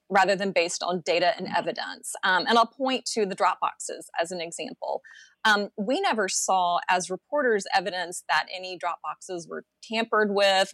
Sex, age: female, 30-49